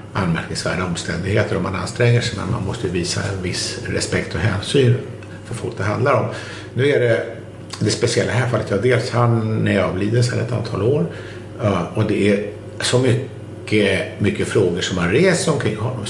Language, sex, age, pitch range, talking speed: Swedish, male, 60-79, 95-120 Hz, 180 wpm